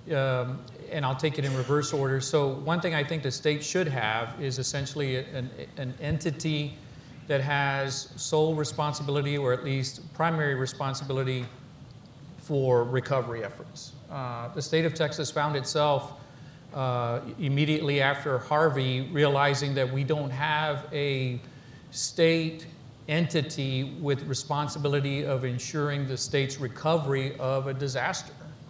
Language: English